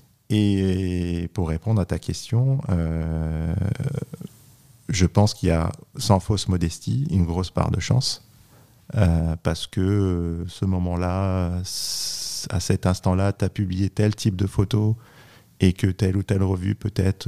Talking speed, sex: 155 wpm, male